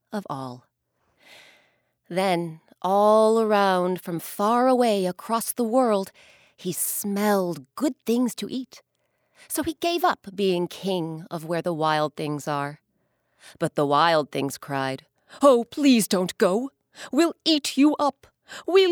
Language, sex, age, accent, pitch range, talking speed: English, female, 30-49, American, 175-250 Hz, 135 wpm